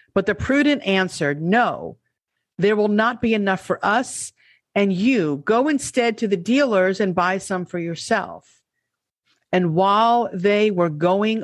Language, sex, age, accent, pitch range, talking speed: English, female, 50-69, American, 150-205 Hz, 150 wpm